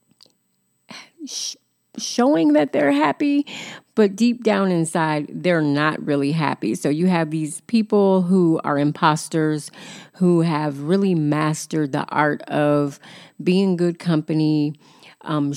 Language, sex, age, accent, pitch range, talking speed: English, female, 30-49, American, 150-195 Hz, 120 wpm